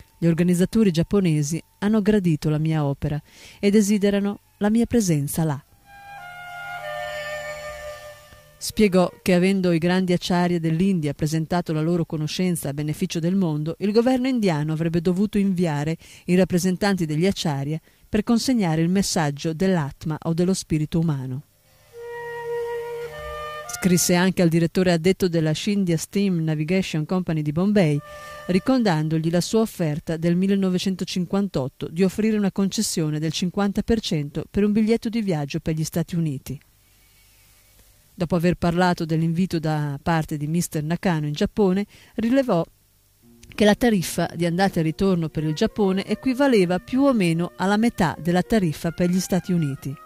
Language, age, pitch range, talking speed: Italian, 40-59, 155-200 Hz, 140 wpm